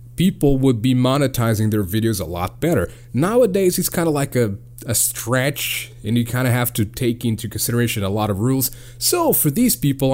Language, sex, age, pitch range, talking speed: English, male, 30-49, 120-165 Hz, 200 wpm